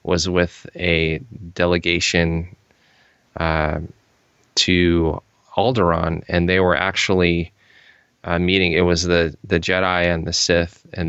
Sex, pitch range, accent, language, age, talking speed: male, 80-90 Hz, American, English, 20-39, 120 wpm